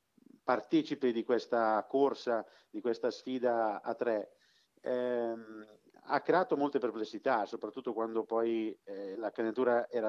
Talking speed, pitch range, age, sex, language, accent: 125 wpm, 115-130 Hz, 50-69, male, Italian, native